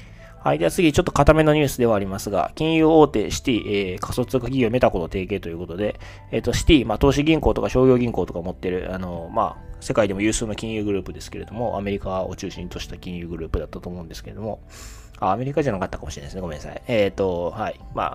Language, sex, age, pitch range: Japanese, male, 20-39, 95-130 Hz